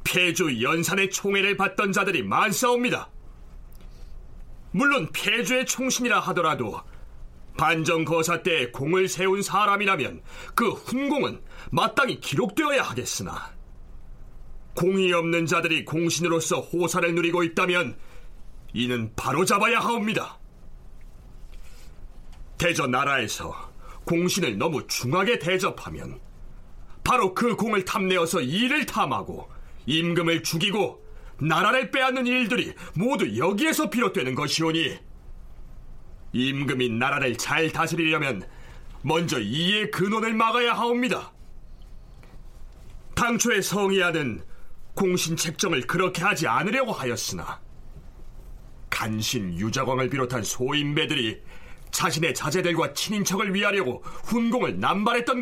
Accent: native